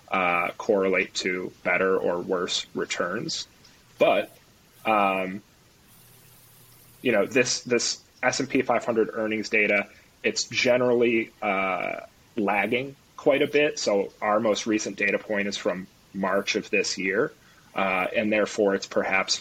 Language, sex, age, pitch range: English, male, 30-49, 95-110 Hz